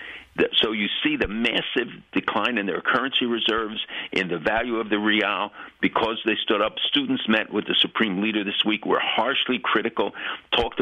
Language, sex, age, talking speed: English, male, 60-79, 180 wpm